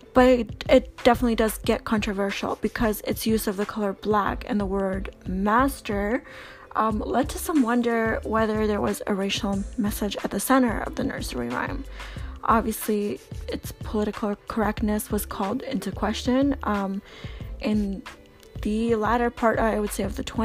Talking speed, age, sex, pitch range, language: 155 wpm, 10-29, female, 205-235 Hz, English